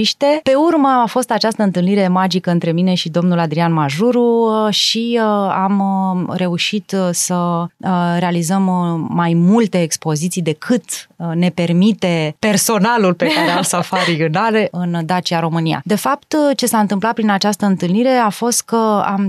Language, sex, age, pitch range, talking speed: Romanian, female, 30-49, 175-220 Hz, 140 wpm